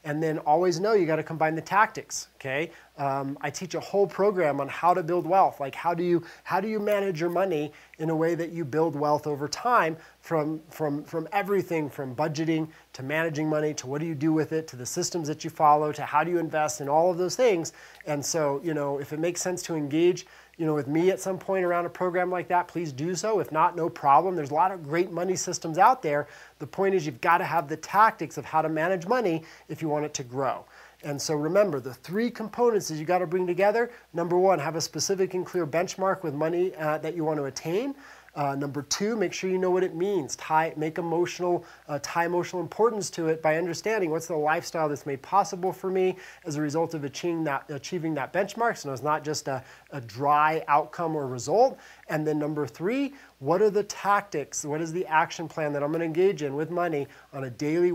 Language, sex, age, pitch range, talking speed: English, male, 30-49, 150-180 Hz, 240 wpm